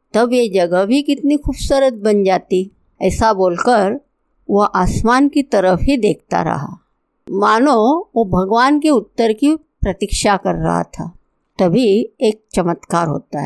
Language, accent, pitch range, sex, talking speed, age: Hindi, native, 195-260 Hz, female, 140 wpm, 50-69